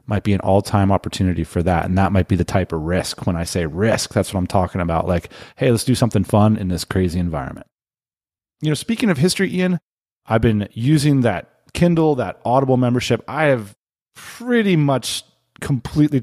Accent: American